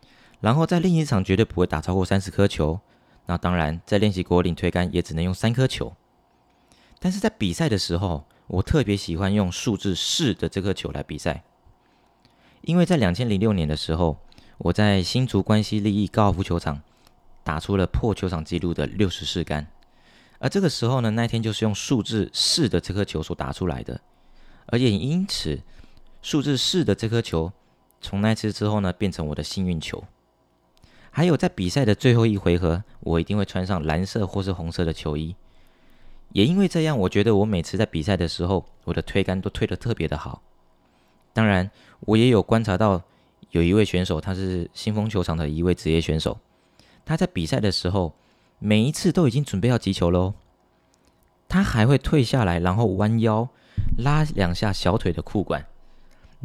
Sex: male